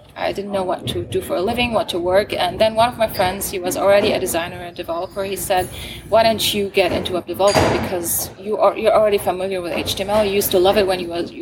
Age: 20-39